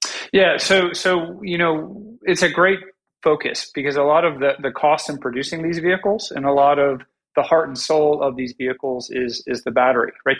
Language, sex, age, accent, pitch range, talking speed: English, male, 40-59, American, 130-165 Hz, 210 wpm